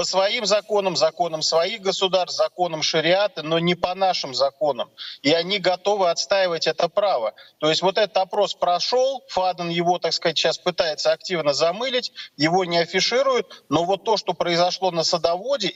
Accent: native